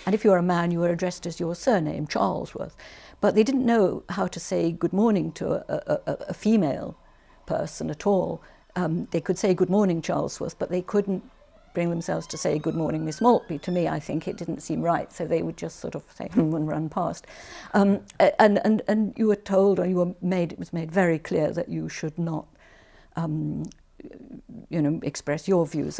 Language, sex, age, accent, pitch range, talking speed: English, female, 60-79, British, 165-200 Hz, 210 wpm